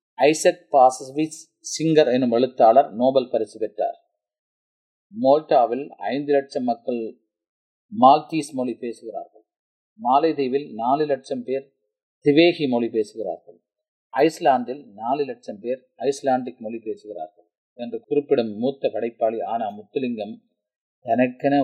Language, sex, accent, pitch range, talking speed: Tamil, male, native, 115-145 Hz, 100 wpm